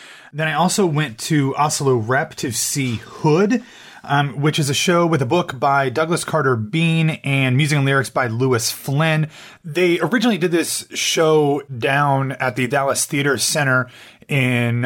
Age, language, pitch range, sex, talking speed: 30-49, English, 120-150 Hz, male, 165 wpm